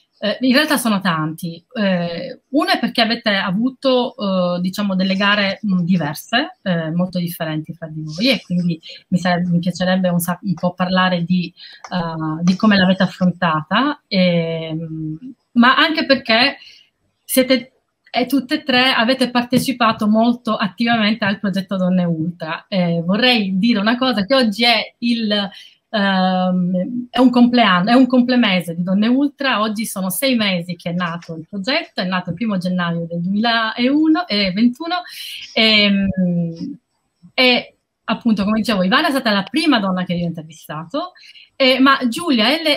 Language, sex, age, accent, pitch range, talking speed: Italian, female, 30-49, native, 180-245 Hz, 145 wpm